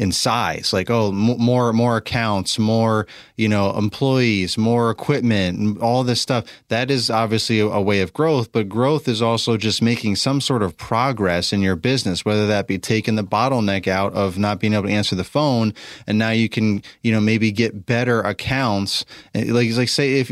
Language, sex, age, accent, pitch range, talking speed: English, male, 30-49, American, 105-125 Hz, 200 wpm